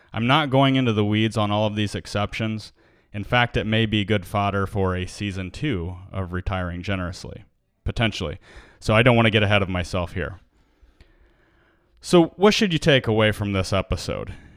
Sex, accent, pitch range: male, American, 100-125 Hz